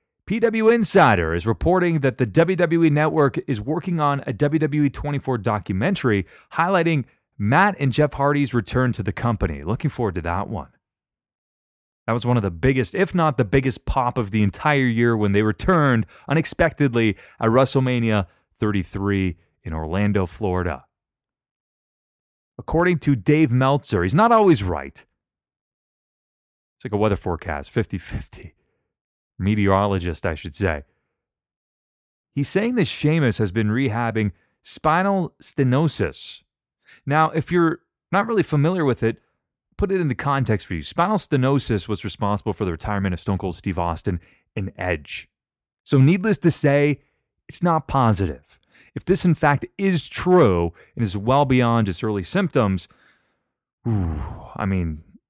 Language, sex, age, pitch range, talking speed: English, male, 30-49, 100-150 Hz, 140 wpm